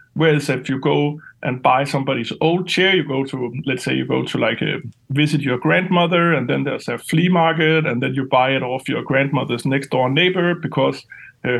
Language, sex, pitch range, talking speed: English, male, 130-160 Hz, 210 wpm